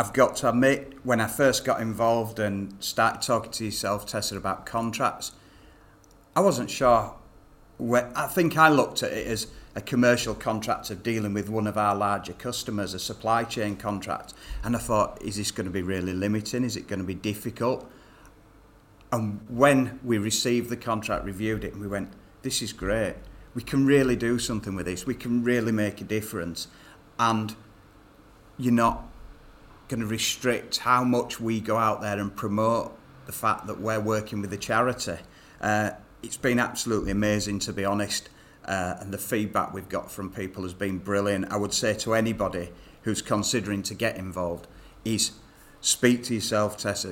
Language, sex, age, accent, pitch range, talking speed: English, male, 40-59, British, 100-120 Hz, 180 wpm